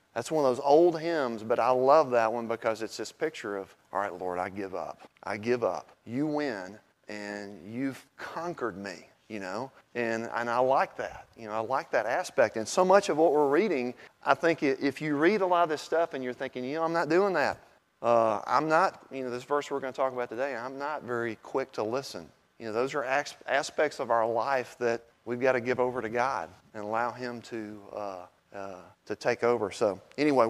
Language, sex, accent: English, male, American